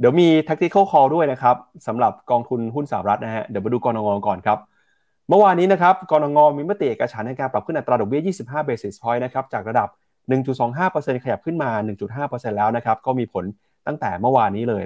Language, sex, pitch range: Thai, male, 115-155 Hz